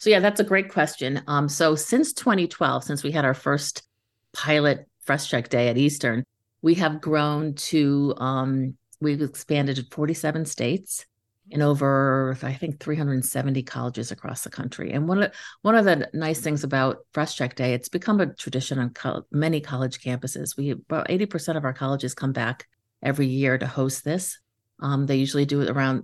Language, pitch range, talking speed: English, 135-170 Hz, 175 wpm